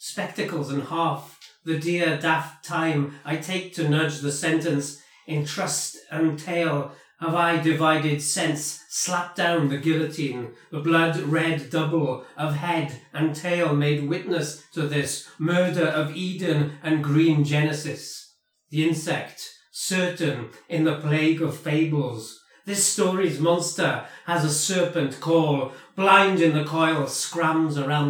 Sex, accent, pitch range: male, British, 150-170 Hz